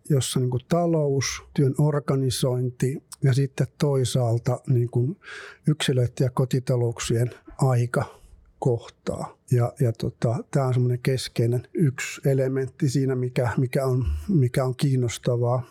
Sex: male